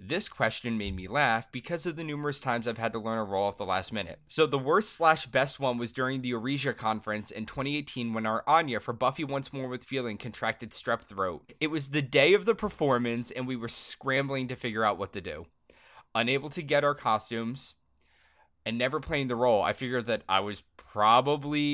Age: 20-39